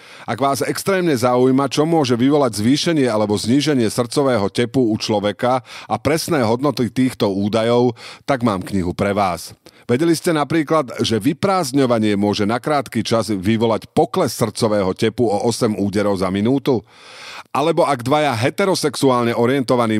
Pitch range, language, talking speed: 105-140 Hz, Slovak, 140 wpm